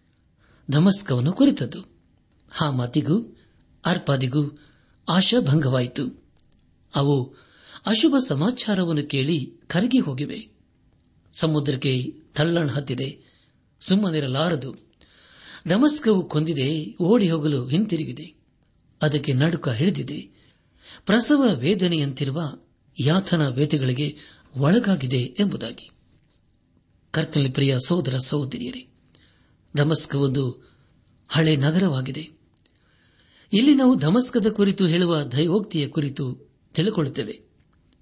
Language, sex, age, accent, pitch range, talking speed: Kannada, male, 60-79, native, 135-175 Hz, 75 wpm